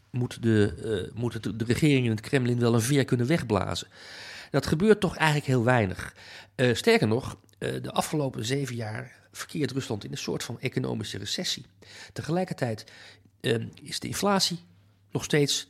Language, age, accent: Dutch, 40-59, Dutch